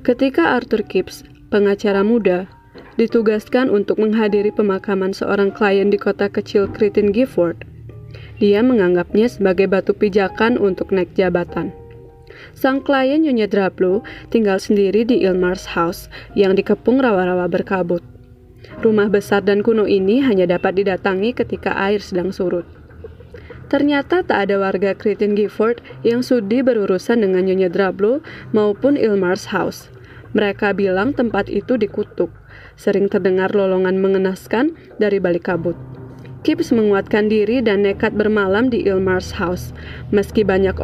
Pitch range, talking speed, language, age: 190-220 Hz, 130 wpm, Indonesian, 20-39